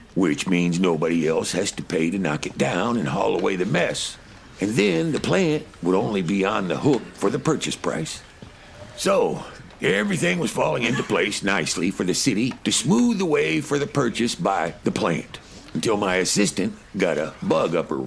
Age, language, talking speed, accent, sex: 60-79, English, 195 wpm, American, male